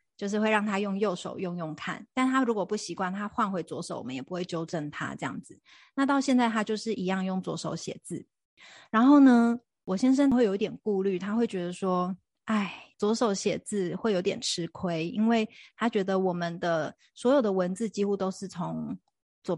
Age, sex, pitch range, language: 30-49, female, 185-230 Hz, Chinese